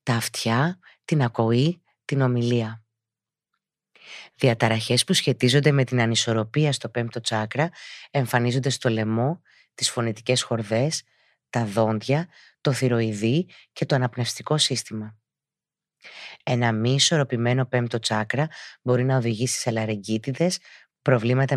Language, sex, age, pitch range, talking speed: Greek, female, 30-49, 115-145 Hz, 110 wpm